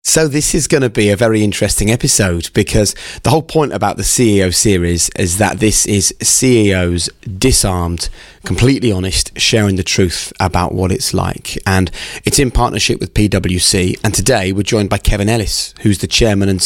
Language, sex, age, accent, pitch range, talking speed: English, male, 20-39, British, 95-110 Hz, 180 wpm